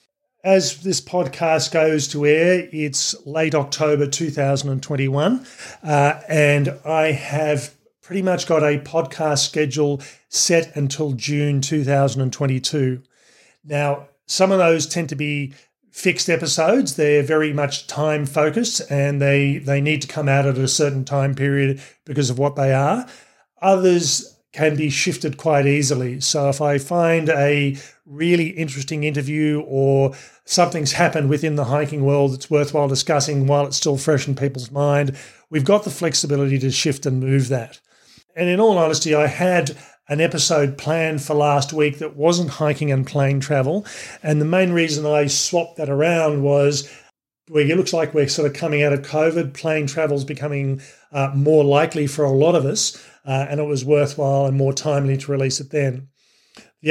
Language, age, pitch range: English, 40-59, 140-165 Hz